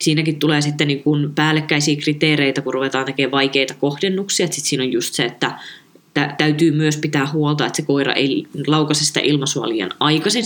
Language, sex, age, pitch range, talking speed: Finnish, female, 20-39, 140-165 Hz, 165 wpm